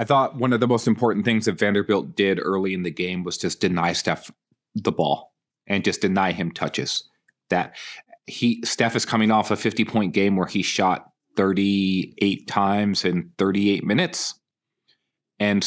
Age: 30-49